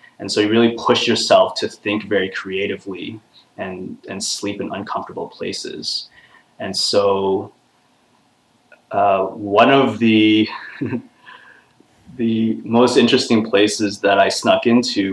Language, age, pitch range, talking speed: English, 20-39, 100-115 Hz, 120 wpm